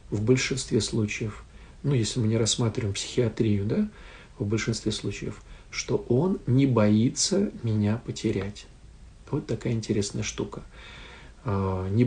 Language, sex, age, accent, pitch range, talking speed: Russian, male, 50-69, native, 105-130 Hz, 120 wpm